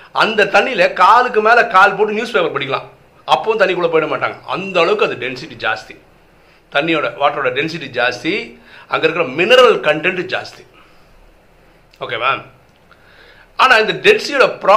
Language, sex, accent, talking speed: Tamil, male, native, 50 wpm